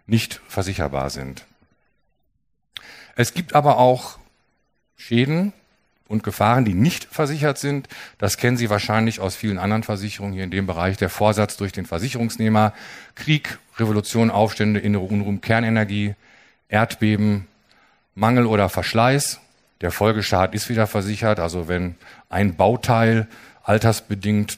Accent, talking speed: German, 120 wpm